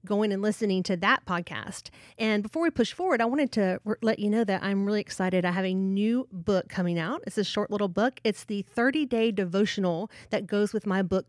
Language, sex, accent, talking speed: English, female, American, 225 wpm